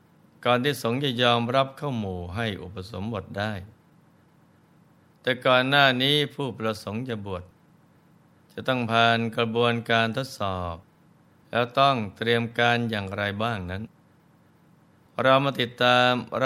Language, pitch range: Thai, 105-125 Hz